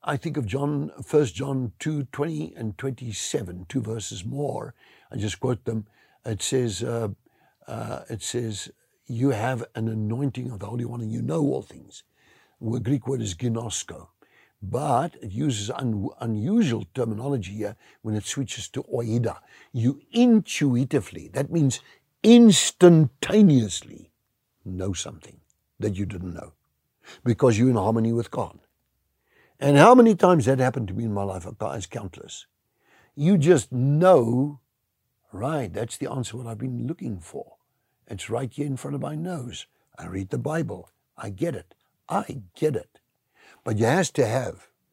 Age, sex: 60-79, male